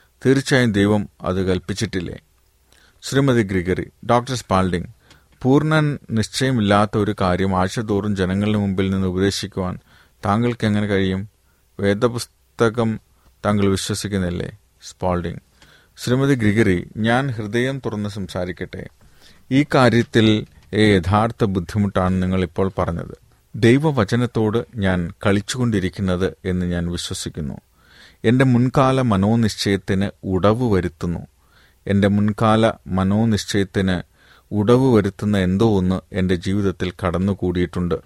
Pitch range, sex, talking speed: 90-110 Hz, male, 95 wpm